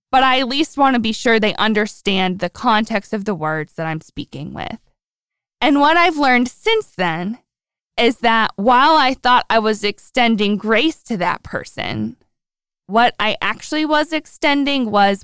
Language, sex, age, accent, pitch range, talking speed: English, female, 20-39, American, 190-245 Hz, 170 wpm